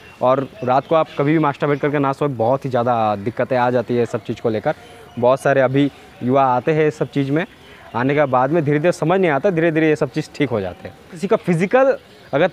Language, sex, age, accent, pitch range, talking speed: Hindi, male, 20-39, native, 135-180 Hz, 255 wpm